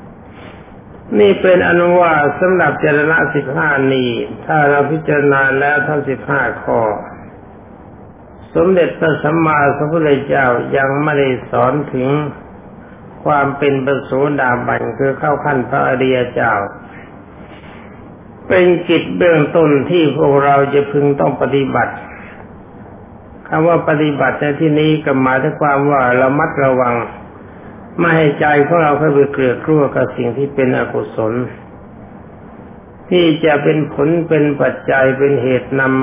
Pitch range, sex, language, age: 120-150 Hz, male, Thai, 60-79